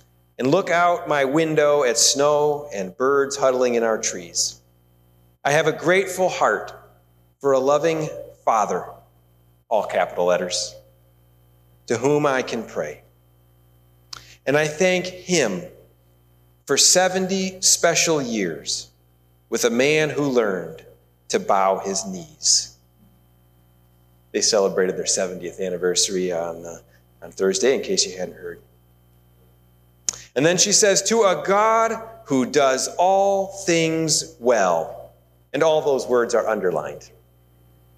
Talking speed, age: 125 wpm, 40-59